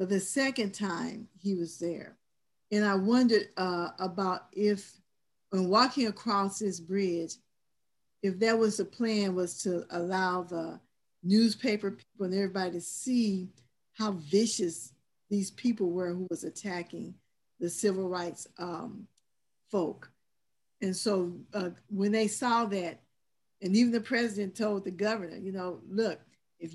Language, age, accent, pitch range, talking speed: English, 50-69, American, 185-215 Hz, 145 wpm